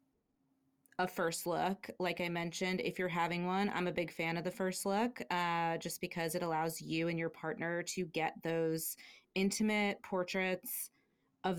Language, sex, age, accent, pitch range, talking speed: English, female, 30-49, American, 165-200 Hz, 170 wpm